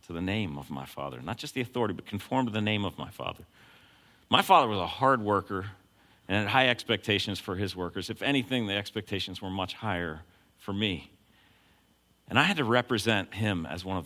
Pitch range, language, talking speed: 95-140 Hz, English, 210 wpm